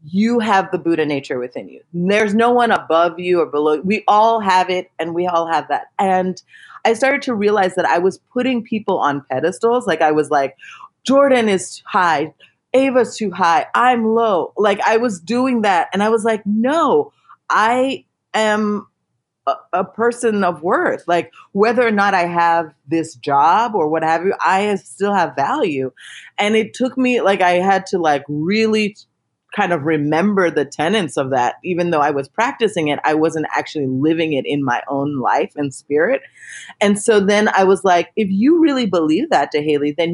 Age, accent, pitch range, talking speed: 30-49, American, 165-225 Hz, 190 wpm